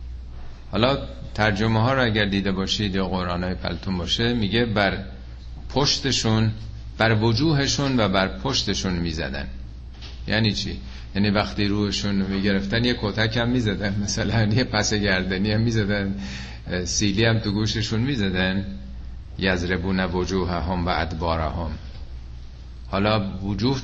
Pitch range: 70-110 Hz